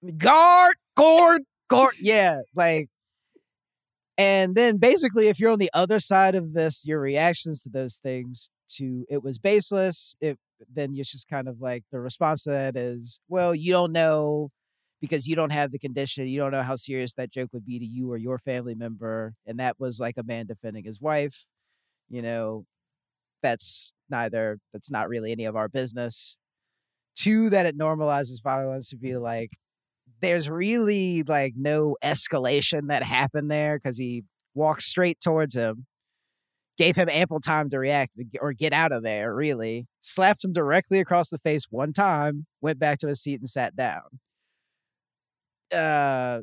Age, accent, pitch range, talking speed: 30-49, American, 125-160 Hz, 175 wpm